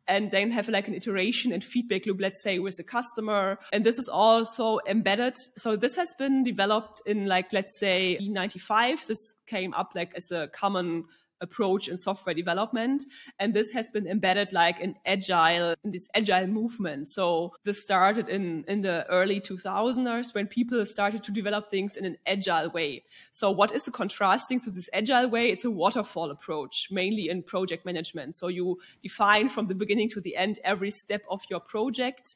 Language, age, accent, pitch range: English, 20-39, German, 180-220 Hz